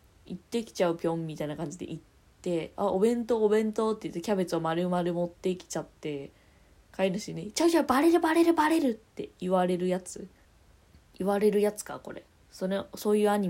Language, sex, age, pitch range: Japanese, female, 20-39, 165-205 Hz